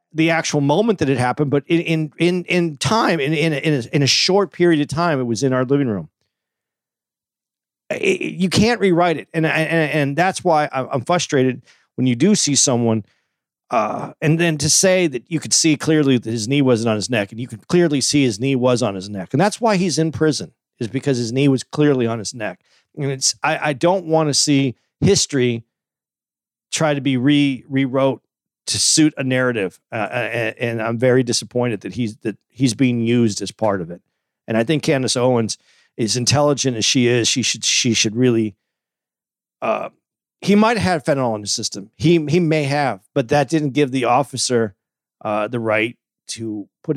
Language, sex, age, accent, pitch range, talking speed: English, male, 40-59, American, 120-155 Hz, 205 wpm